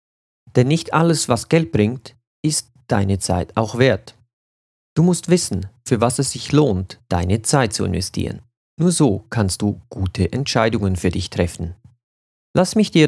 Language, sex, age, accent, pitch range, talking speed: German, male, 40-59, German, 100-135 Hz, 160 wpm